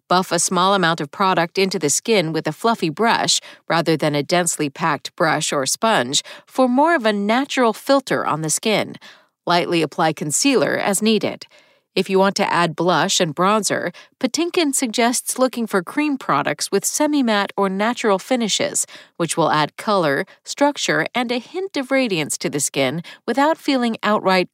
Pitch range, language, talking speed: 165-245 Hz, English, 170 wpm